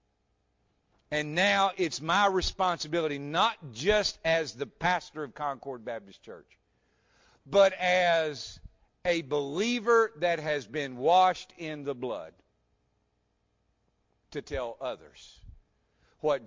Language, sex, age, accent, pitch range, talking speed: English, male, 50-69, American, 135-200 Hz, 105 wpm